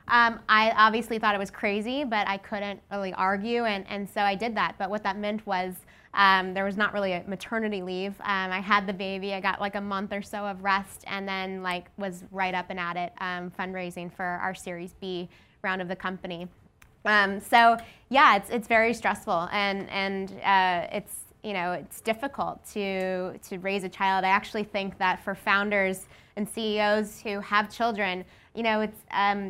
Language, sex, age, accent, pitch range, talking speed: English, female, 20-39, American, 185-215 Hz, 200 wpm